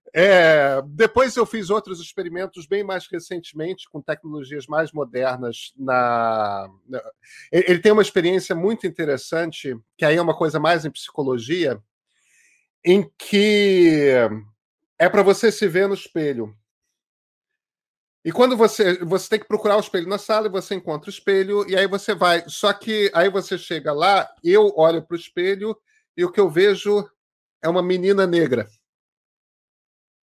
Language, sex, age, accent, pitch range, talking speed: Portuguese, male, 40-59, Brazilian, 165-215 Hz, 155 wpm